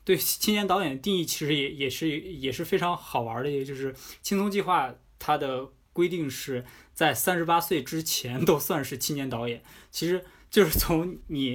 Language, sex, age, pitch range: Chinese, male, 20-39, 125-165 Hz